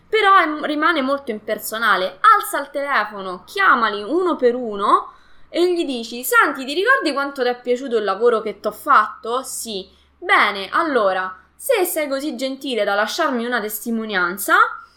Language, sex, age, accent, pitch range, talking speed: Italian, female, 20-39, native, 205-325 Hz, 150 wpm